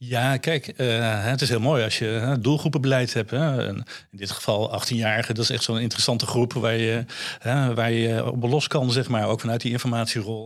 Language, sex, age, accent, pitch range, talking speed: Dutch, male, 50-69, Dutch, 110-130 Hz, 220 wpm